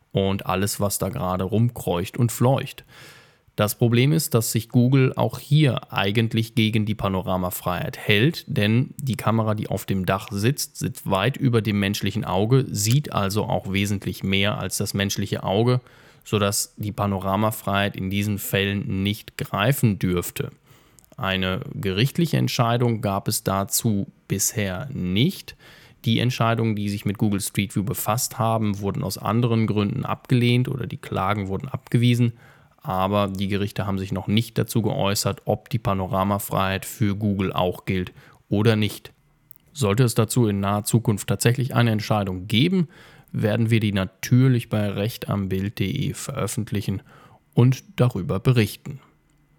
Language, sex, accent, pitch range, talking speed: German, male, German, 100-130 Hz, 145 wpm